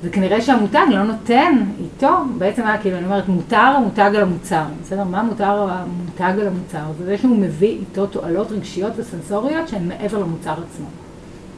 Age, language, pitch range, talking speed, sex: 30-49, Hebrew, 180-235 Hz, 165 wpm, female